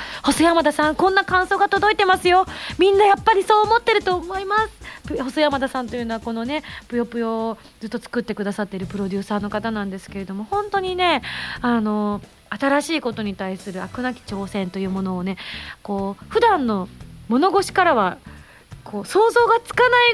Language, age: Japanese, 30-49